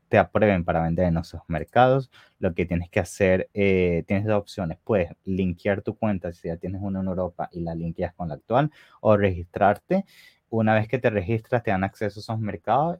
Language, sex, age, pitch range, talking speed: English, male, 20-39, 90-105 Hz, 210 wpm